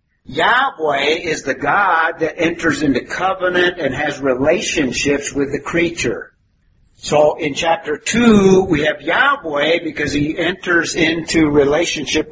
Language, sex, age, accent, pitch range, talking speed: English, male, 50-69, American, 135-160 Hz, 125 wpm